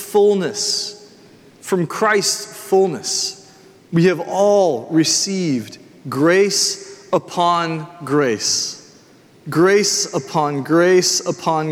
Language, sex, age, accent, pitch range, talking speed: English, male, 30-49, American, 165-210 Hz, 75 wpm